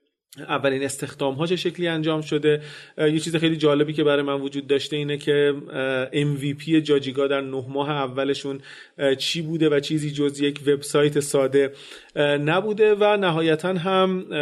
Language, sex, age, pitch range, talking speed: Persian, male, 30-49, 135-160 Hz, 145 wpm